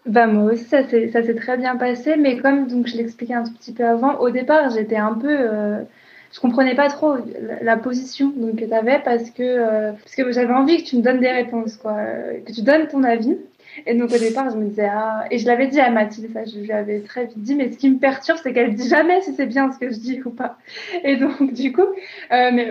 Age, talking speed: 20-39, 265 wpm